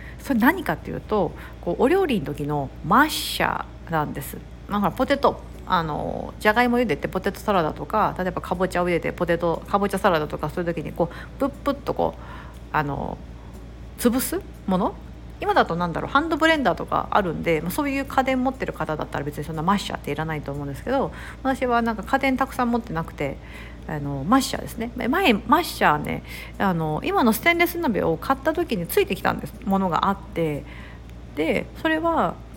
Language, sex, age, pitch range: Japanese, female, 50-69, 160-265 Hz